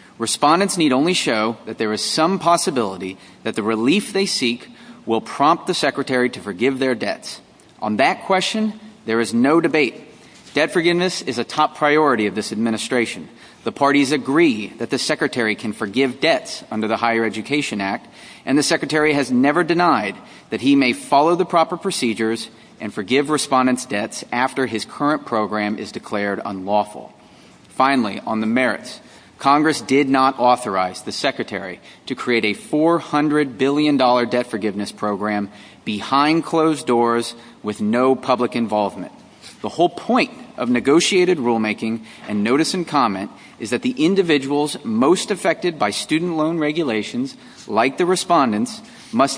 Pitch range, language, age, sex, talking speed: 115-165 Hz, English, 30-49, male, 150 wpm